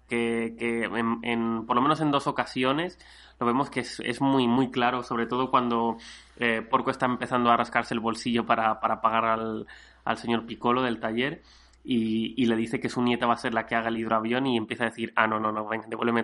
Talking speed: 230 wpm